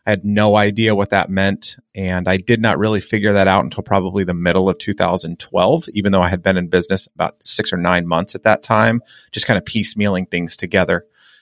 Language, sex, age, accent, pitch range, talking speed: English, male, 30-49, American, 95-110 Hz, 220 wpm